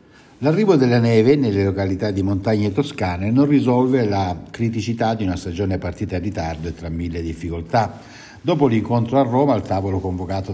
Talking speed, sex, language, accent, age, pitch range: 165 wpm, male, Italian, native, 60-79, 90-115 Hz